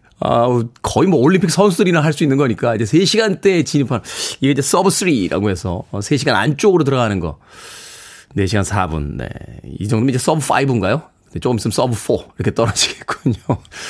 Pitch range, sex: 115-165 Hz, male